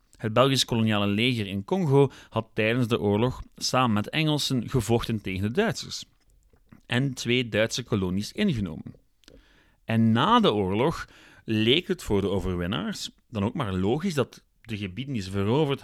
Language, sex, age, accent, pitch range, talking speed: Dutch, male, 30-49, Dutch, 100-130 Hz, 155 wpm